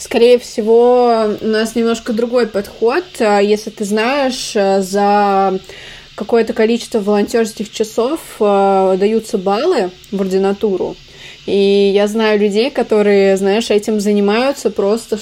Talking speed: 110 wpm